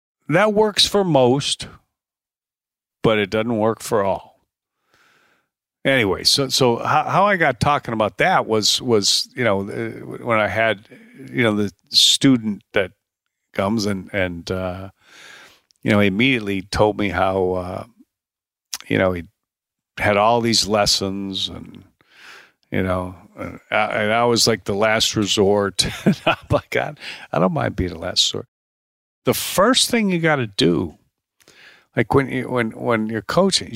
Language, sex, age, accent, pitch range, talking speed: English, male, 50-69, American, 100-135 Hz, 155 wpm